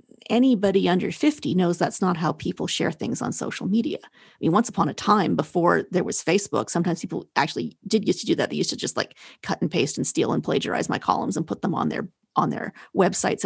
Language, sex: English, female